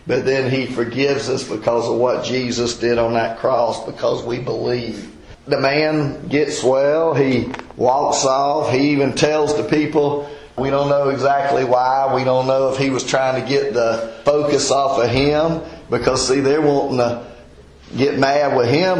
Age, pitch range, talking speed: 40-59, 130-145 Hz, 175 wpm